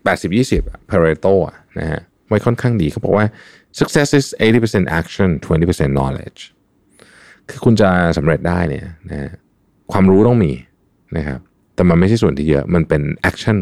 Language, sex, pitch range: Thai, male, 75-105 Hz